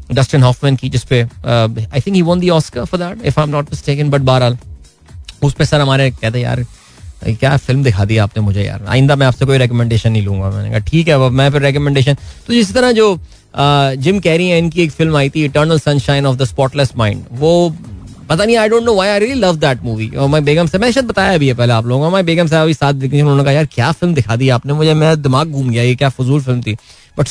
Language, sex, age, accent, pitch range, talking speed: Hindi, male, 20-39, native, 120-165 Hz, 115 wpm